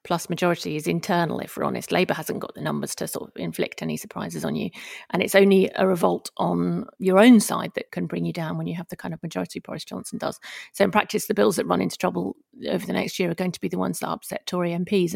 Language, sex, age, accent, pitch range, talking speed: English, female, 40-59, British, 175-210 Hz, 265 wpm